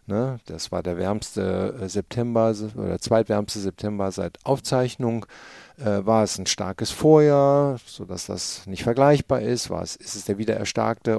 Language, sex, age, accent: German, male, 50-69, German